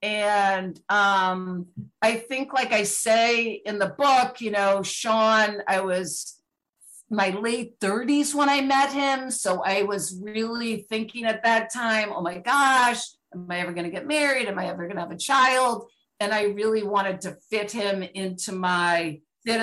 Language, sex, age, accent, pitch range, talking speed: English, female, 50-69, American, 200-275 Hz, 175 wpm